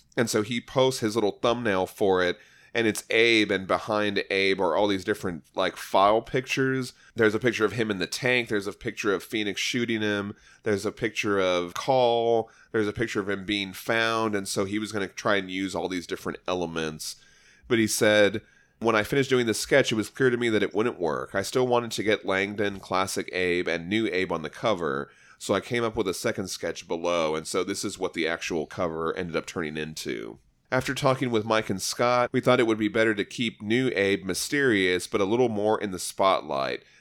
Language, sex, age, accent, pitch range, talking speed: English, male, 30-49, American, 95-120 Hz, 225 wpm